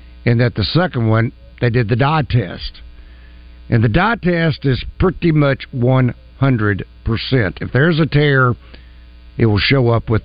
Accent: American